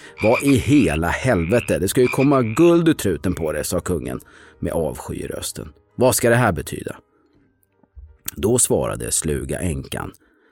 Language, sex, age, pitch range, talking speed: Swedish, male, 40-59, 80-125 Hz, 145 wpm